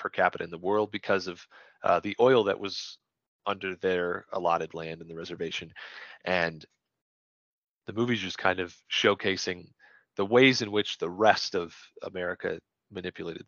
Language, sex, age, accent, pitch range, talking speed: English, male, 30-49, American, 90-105 Hz, 155 wpm